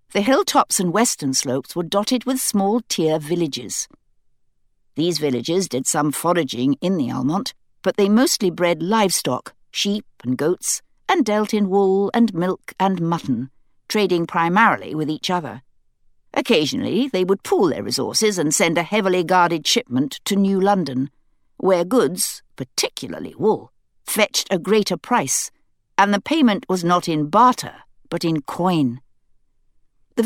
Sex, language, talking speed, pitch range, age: female, English, 145 wpm, 155-205 Hz, 60-79